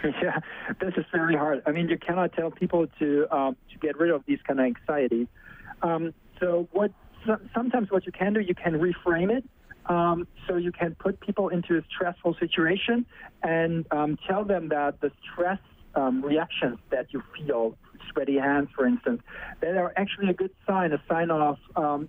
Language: English